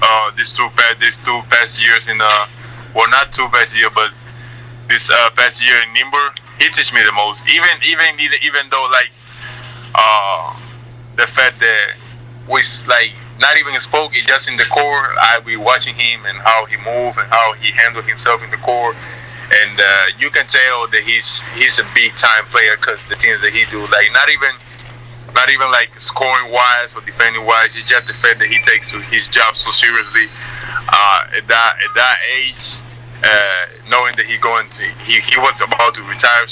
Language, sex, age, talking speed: English, male, 20-39, 195 wpm